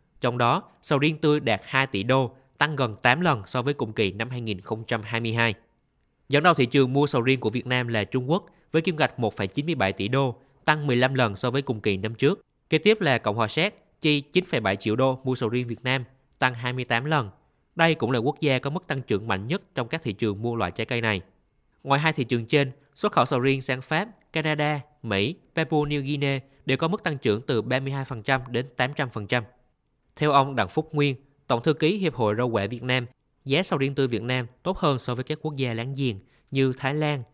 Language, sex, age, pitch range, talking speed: Vietnamese, male, 20-39, 115-150 Hz, 230 wpm